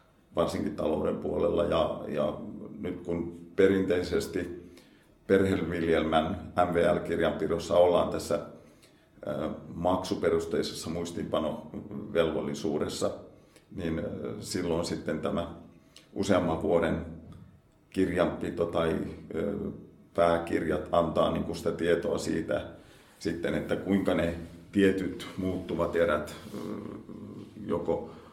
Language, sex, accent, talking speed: Finnish, male, native, 75 wpm